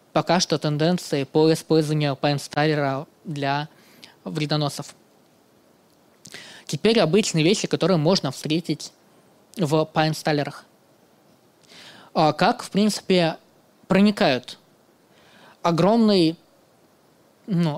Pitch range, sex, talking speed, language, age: 155-190 Hz, male, 70 wpm, Russian, 20-39